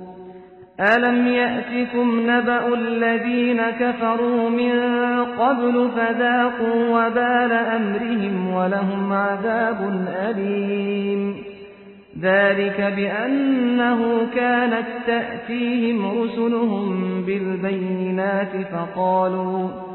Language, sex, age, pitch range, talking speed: Filipino, male, 50-69, 200-245 Hz, 60 wpm